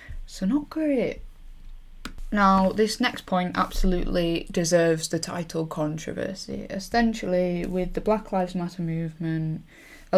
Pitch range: 165-195 Hz